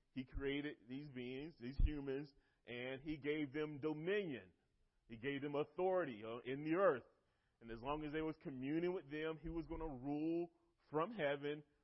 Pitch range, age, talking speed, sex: 125-165 Hz, 30-49, 170 wpm, male